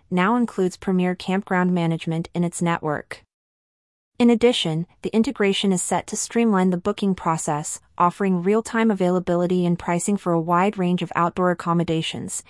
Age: 30-49